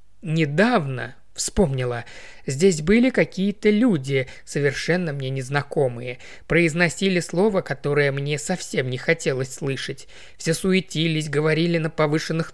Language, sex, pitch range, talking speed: Russian, male, 130-170 Hz, 105 wpm